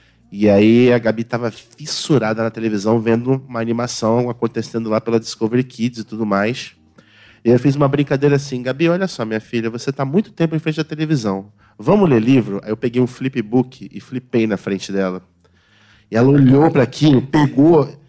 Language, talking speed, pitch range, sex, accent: Portuguese, 190 wpm, 115-155 Hz, male, Brazilian